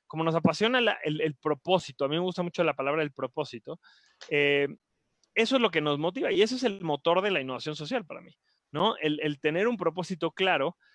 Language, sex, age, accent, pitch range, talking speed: Spanish, male, 20-39, Mexican, 145-175 Hz, 225 wpm